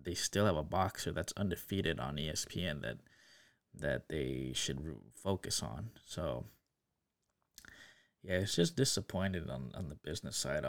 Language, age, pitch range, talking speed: English, 20-39, 90-110 Hz, 140 wpm